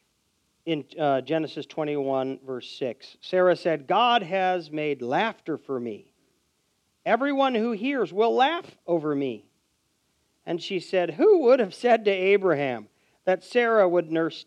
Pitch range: 125-190 Hz